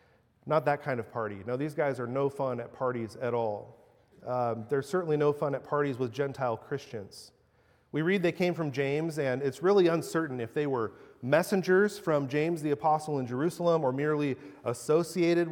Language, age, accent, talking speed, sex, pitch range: English, 30-49, American, 185 wpm, male, 135-170 Hz